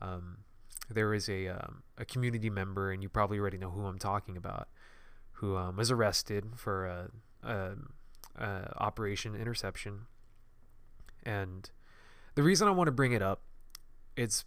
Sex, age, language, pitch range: male, 20-39, English, 100-115 Hz